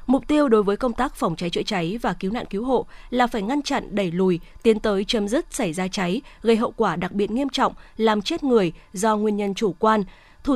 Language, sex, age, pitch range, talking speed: Vietnamese, female, 20-39, 195-255 Hz, 250 wpm